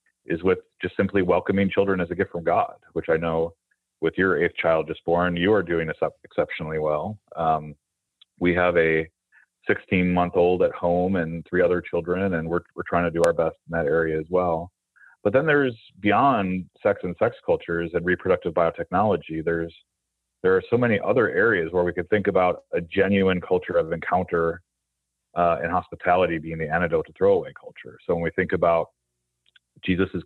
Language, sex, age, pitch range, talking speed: English, male, 30-49, 80-95 Hz, 180 wpm